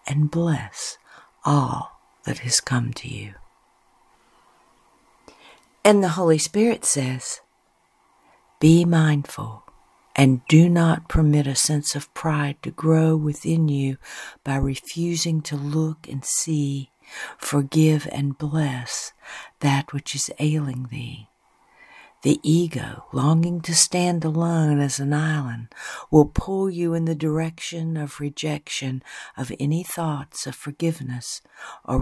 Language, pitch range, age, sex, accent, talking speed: English, 135-155 Hz, 60-79, female, American, 120 wpm